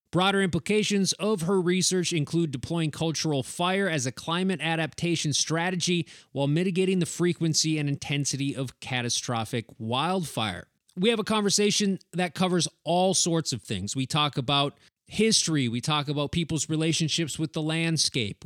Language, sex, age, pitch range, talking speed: English, male, 20-39, 140-180 Hz, 145 wpm